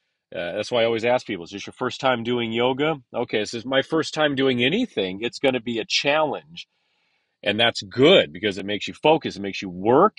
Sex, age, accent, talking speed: male, 40-59, American, 235 wpm